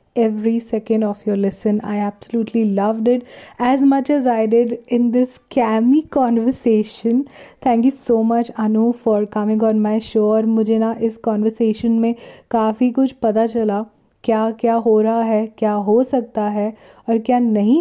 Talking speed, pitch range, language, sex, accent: 170 wpm, 215-250 Hz, Hindi, female, native